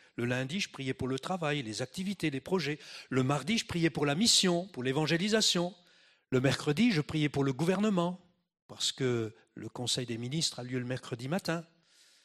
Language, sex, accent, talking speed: French, male, French, 185 wpm